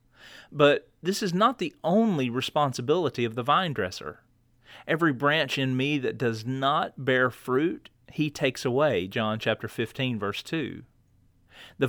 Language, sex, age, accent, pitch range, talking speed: English, male, 40-59, American, 120-140 Hz, 145 wpm